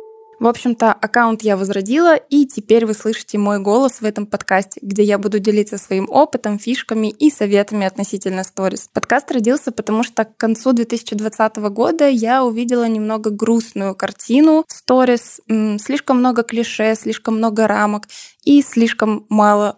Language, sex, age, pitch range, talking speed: Russian, female, 10-29, 210-245 Hz, 145 wpm